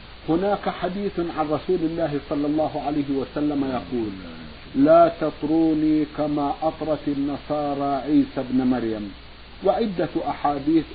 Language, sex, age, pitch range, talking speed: Arabic, male, 50-69, 140-160 Hz, 110 wpm